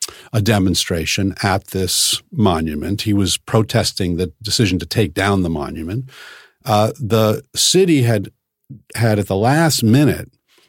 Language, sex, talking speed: English, male, 135 wpm